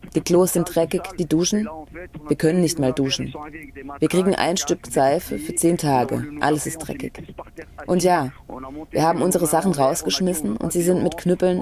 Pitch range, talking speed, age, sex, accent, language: 135-175 Hz, 175 wpm, 30-49, female, German, German